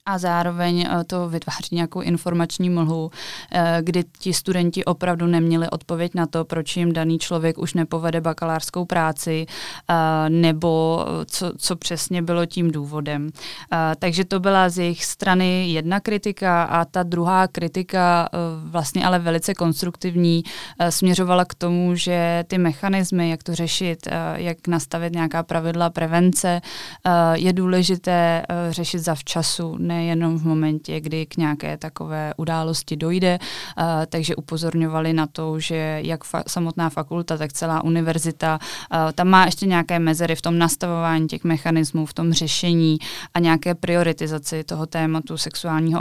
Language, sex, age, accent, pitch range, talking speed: Czech, female, 20-39, native, 160-175 Hz, 140 wpm